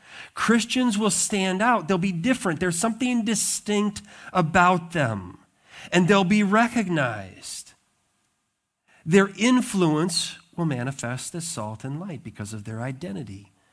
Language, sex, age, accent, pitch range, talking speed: English, male, 40-59, American, 145-200 Hz, 120 wpm